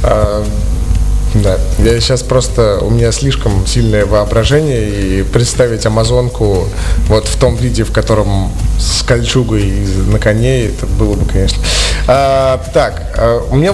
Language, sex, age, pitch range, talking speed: Russian, male, 20-39, 100-130 Hz, 135 wpm